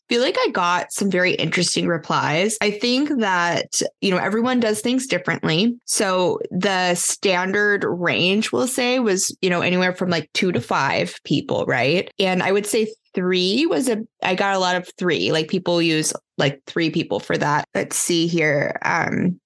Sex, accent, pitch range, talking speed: female, American, 170-205 Hz, 180 wpm